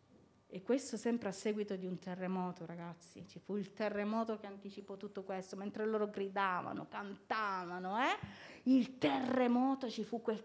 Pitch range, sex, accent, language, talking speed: 175-220 Hz, female, native, Italian, 155 wpm